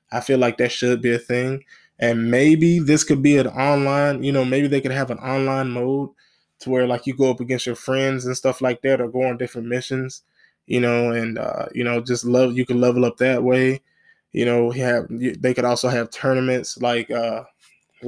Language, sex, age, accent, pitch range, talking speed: English, male, 20-39, American, 120-130 Hz, 220 wpm